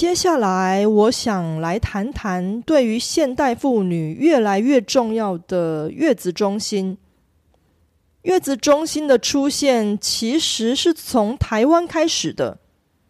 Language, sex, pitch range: Korean, female, 195-275 Hz